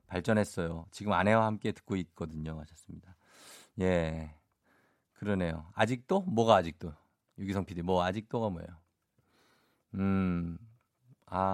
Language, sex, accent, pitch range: Korean, male, native, 90-120 Hz